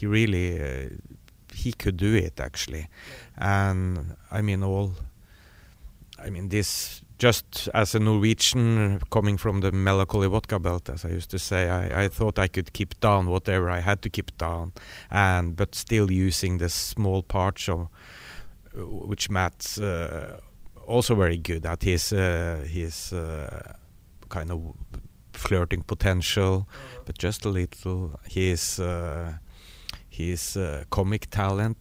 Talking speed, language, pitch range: 140 wpm, English, 85-100 Hz